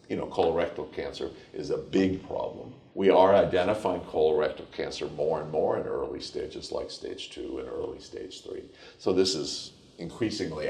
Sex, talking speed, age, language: male, 170 wpm, 50-69, English